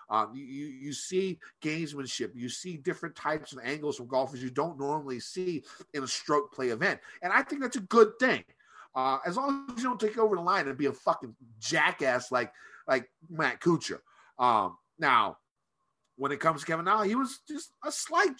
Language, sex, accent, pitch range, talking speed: English, male, American, 125-185 Hz, 200 wpm